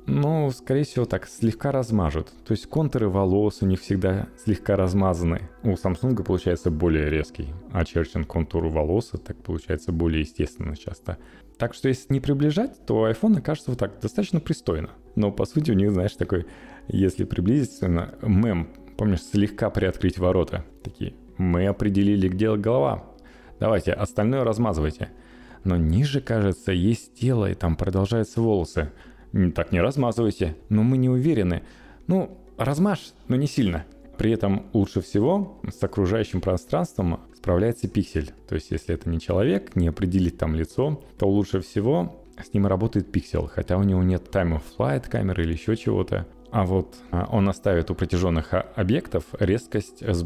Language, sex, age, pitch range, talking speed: Russian, male, 20-39, 85-115 Hz, 155 wpm